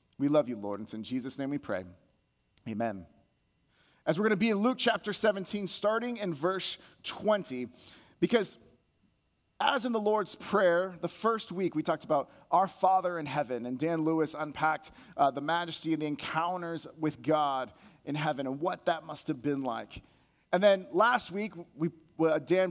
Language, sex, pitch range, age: English, male, 145-190 Hz, 30-49